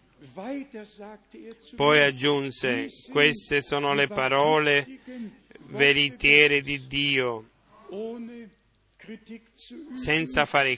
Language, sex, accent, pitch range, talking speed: Italian, male, native, 140-150 Hz, 60 wpm